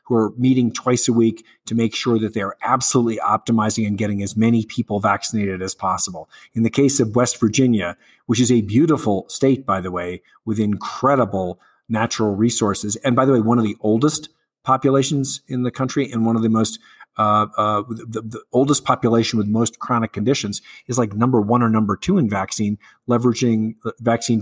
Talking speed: 190 wpm